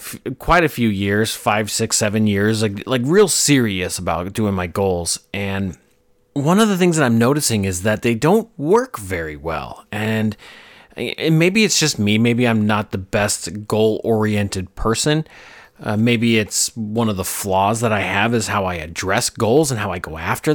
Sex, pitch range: male, 100-130 Hz